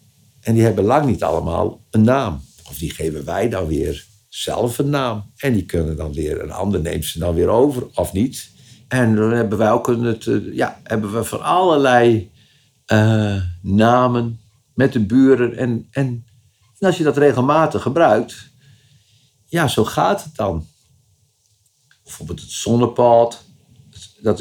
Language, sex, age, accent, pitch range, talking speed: Dutch, male, 50-69, Dutch, 100-130 Hz, 160 wpm